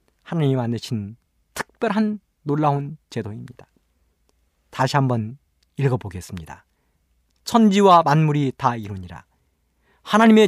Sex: male